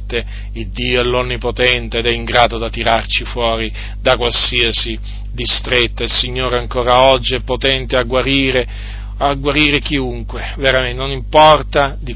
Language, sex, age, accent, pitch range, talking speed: Italian, male, 40-59, native, 110-135 Hz, 140 wpm